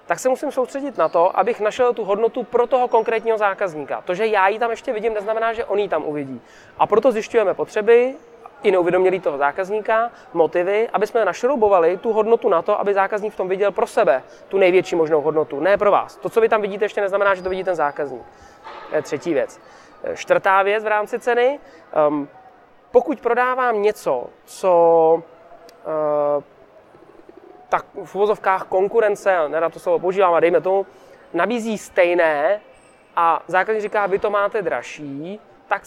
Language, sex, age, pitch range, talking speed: Czech, male, 20-39, 180-230 Hz, 170 wpm